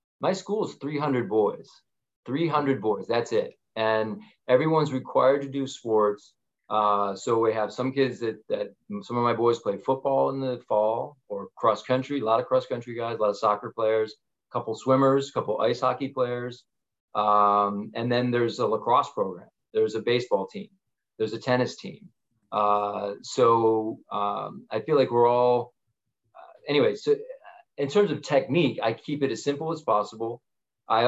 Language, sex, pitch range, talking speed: English, male, 110-140 Hz, 180 wpm